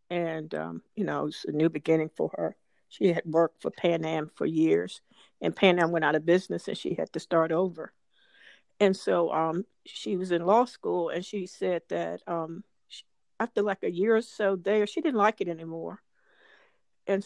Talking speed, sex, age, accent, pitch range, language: 205 wpm, female, 50-69, American, 170-210 Hz, English